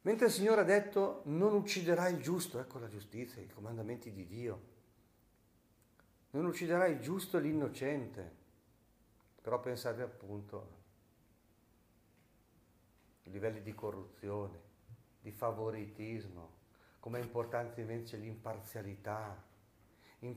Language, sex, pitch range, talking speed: Italian, male, 105-115 Hz, 105 wpm